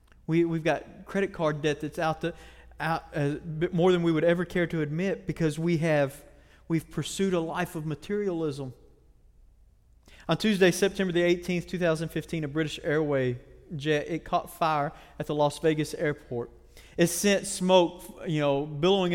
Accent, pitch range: American, 150-180 Hz